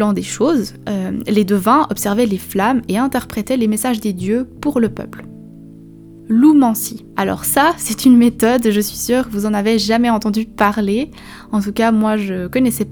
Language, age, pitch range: French, 20-39, 200-245 Hz